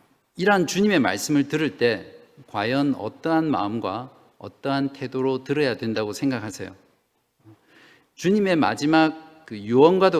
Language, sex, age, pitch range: Korean, male, 50-69, 120-155 Hz